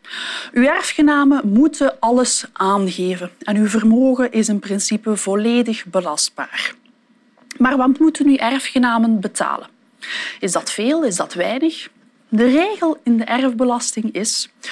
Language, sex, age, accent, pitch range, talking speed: Dutch, female, 20-39, Dutch, 215-295 Hz, 125 wpm